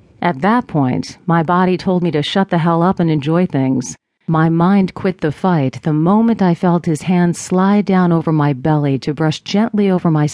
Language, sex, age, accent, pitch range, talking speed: English, female, 40-59, American, 150-180 Hz, 210 wpm